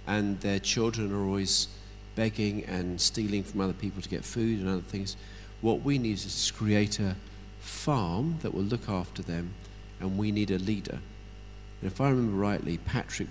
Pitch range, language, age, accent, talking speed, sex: 95-110 Hz, English, 50-69, British, 185 wpm, male